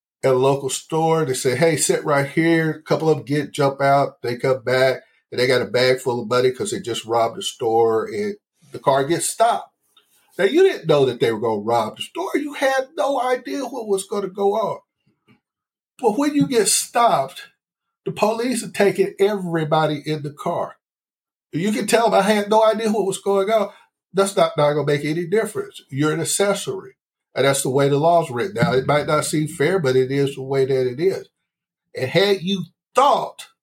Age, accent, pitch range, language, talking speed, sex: 50-69, American, 140-200 Hz, English, 215 wpm, male